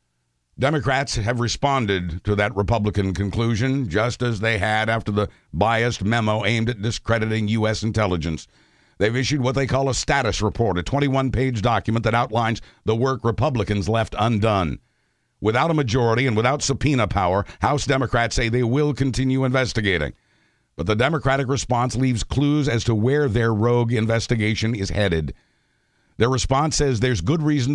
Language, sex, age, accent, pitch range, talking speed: English, male, 60-79, American, 105-135 Hz, 155 wpm